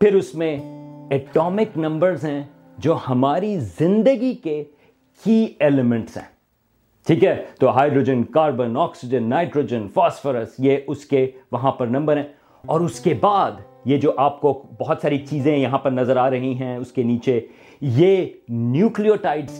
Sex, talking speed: male, 130 wpm